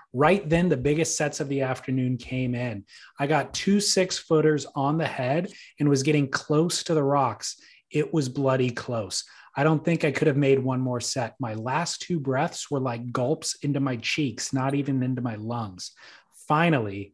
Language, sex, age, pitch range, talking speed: English, male, 30-49, 130-155 Hz, 190 wpm